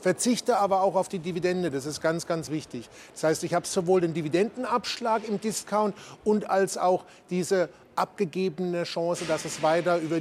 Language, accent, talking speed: German, German, 175 wpm